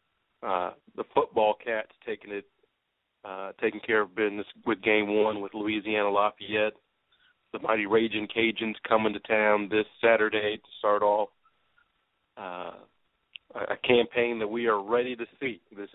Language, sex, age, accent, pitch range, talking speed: English, male, 40-59, American, 105-120 Hz, 145 wpm